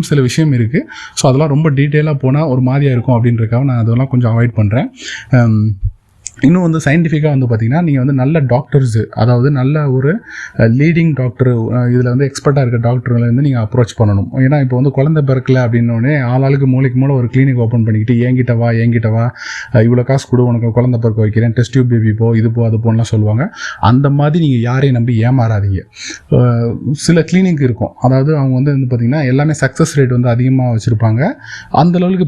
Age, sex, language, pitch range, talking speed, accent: 20-39, male, Tamil, 120-140 Hz, 155 wpm, native